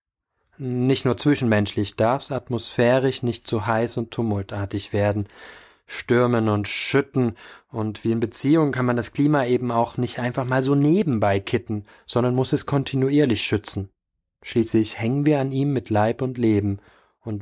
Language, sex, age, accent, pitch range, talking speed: German, male, 20-39, German, 110-135 Hz, 160 wpm